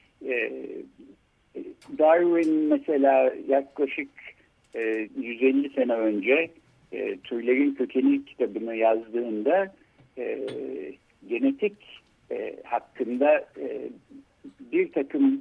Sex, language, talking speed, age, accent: male, Turkish, 80 wpm, 60-79, native